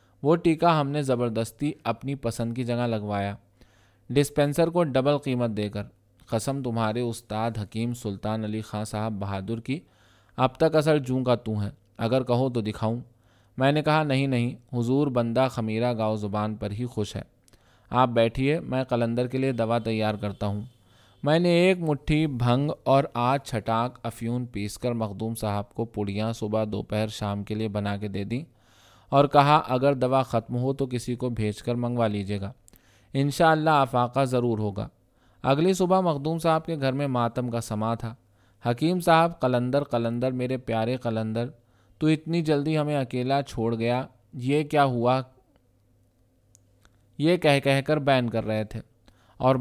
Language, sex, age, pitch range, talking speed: Urdu, male, 20-39, 110-135 Hz, 170 wpm